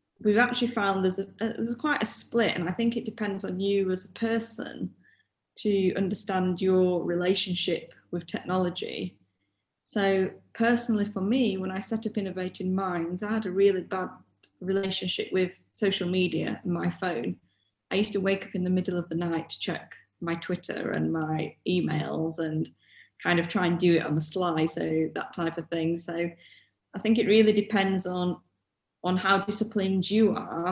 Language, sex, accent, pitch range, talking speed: English, female, British, 175-200 Hz, 180 wpm